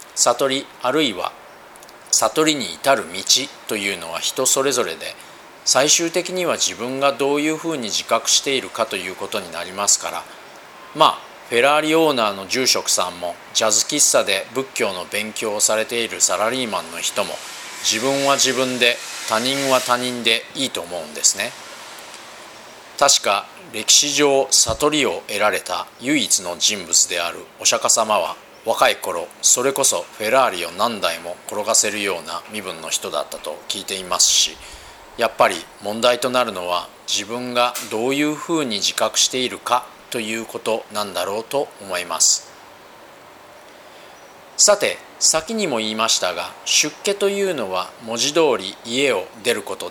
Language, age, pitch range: Japanese, 40-59, 110-160 Hz